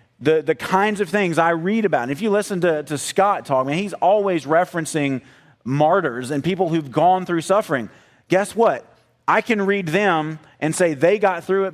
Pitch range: 150-190 Hz